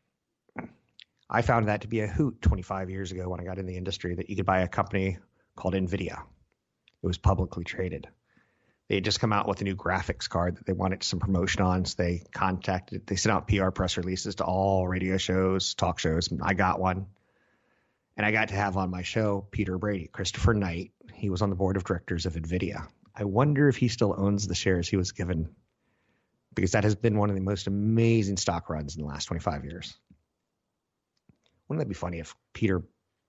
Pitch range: 90-105 Hz